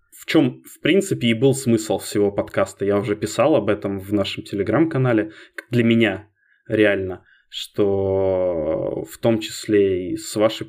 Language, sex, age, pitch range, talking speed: Russian, male, 20-39, 100-110 Hz, 150 wpm